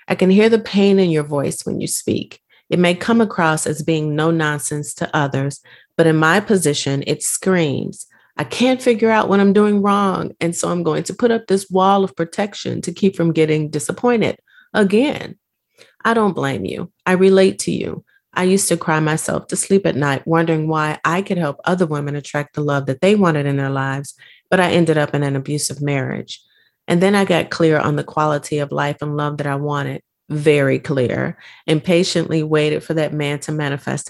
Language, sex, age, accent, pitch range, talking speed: English, female, 30-49, American, 145-190 Hz, 210 wpm